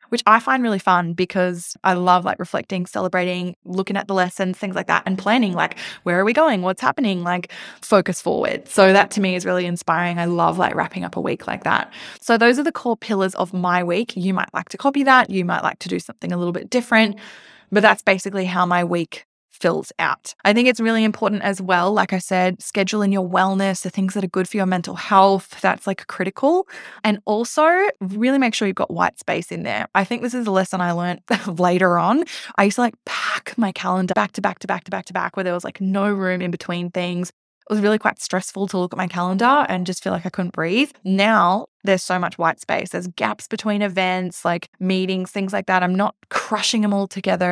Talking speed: 235 wpm